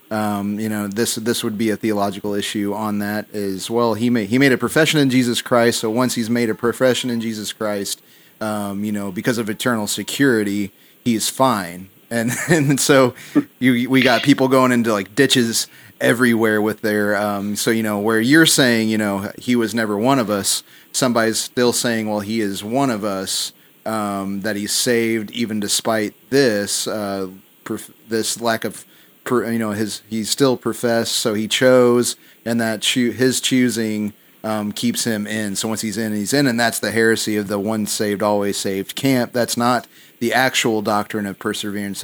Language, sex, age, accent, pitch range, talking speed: English, male, 30-49, American, 105-125 Hz, 190 wpm